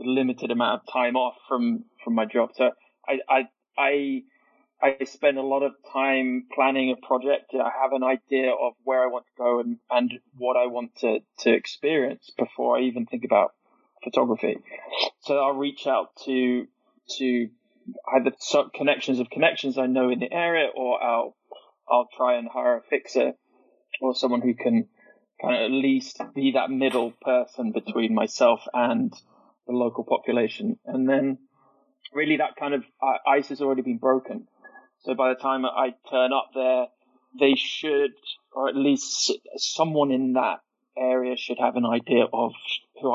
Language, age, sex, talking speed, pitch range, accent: English, 20-39, male, 170 wpm, 125-155 Hz, British